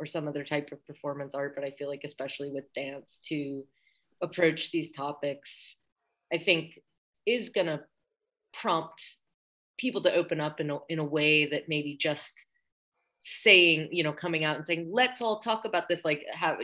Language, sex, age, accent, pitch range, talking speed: English, female, 30-49, American, 145-170 Hz, 175 wpm